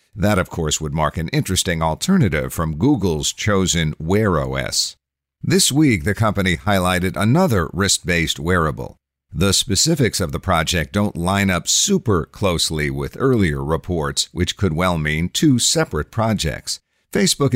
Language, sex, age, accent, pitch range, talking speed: English, male, 50-69, American, 80-105 Hz, 145 wpm